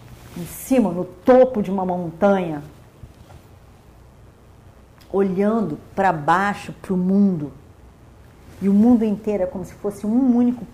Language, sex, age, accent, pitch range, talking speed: Portuguese, female, 40-59, Brazilian, 115-190 Hz, 130 wpm